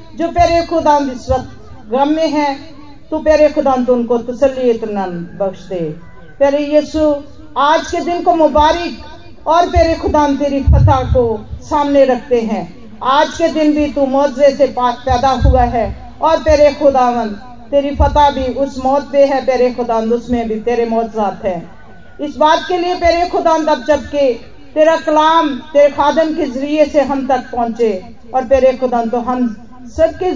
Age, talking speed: 50-69, 165 wpm